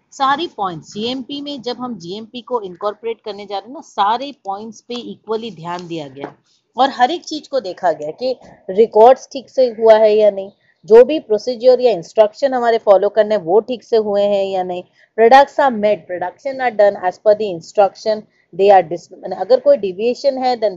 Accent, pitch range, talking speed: Indian, 185-250 Hz, 145 wpm